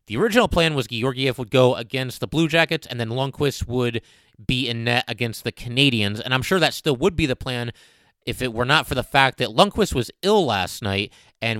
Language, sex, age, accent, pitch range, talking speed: English, male, 30-49, American, 115-145 Hz, 230 wpm